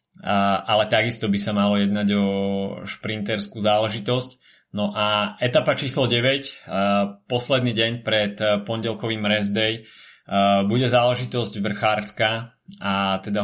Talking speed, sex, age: 125 wpm, male, 20-39